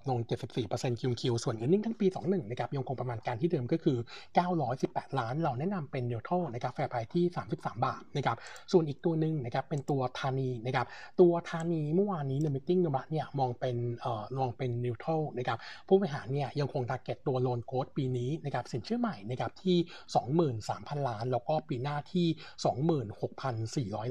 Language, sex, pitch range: Thai, male, 125-160 Hz